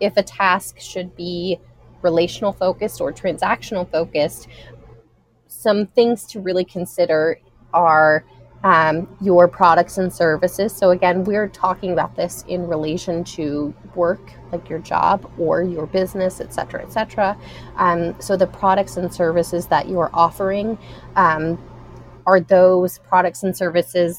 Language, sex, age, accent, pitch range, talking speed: English, female, 20-39, American, 165-185 Hz, 140 wpm